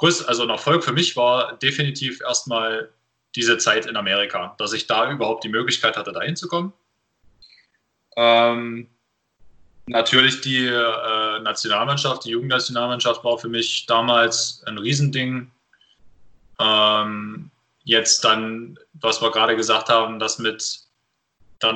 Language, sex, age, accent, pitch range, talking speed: German, male, 20-39, German, 115-125 Hz, 120 wpm